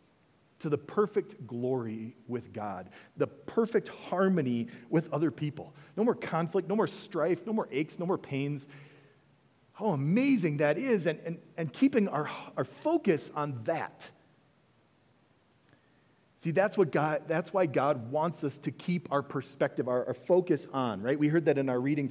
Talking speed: 165 wpm